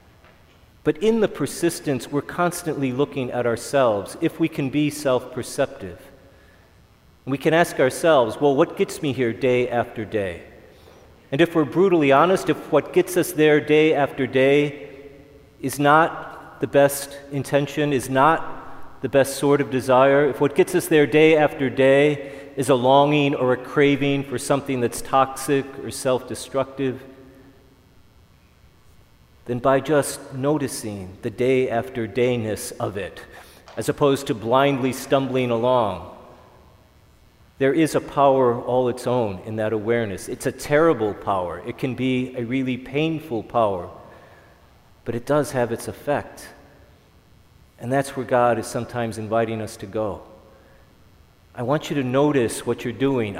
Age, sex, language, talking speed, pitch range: 40-59, male, English, 145 wpm, 120-145 Hz